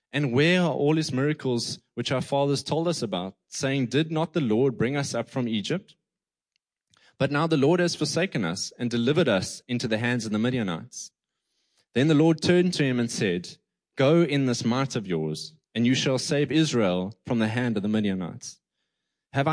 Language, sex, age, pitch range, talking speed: English, male, 20-39, 115-155 Hz, 195 wpm